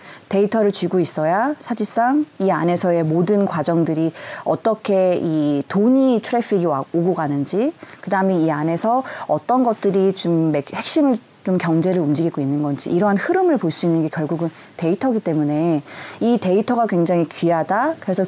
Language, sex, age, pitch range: Korean, female, 30-49, 165-235 Hz